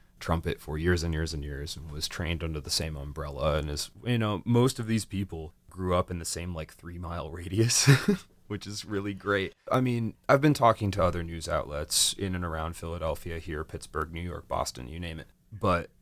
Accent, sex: American, male